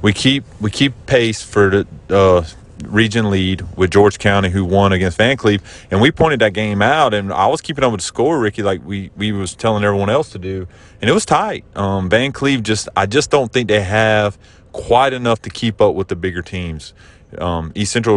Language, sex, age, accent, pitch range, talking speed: English, male, 30-49, American, 85-105 Hz, 225 wpm